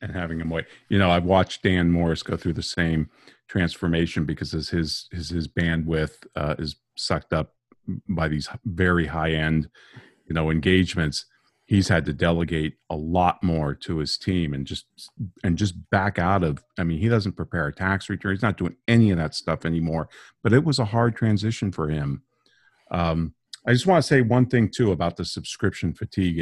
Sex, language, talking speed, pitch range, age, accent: male, English, 200 wpm, 80-105 Hz, 40-59, American